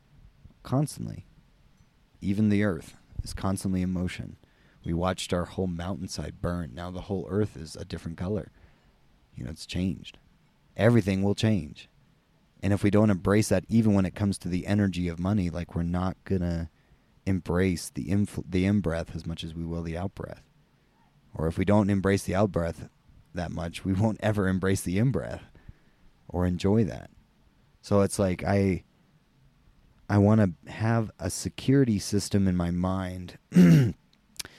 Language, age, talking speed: English, 30-49, 165 wpm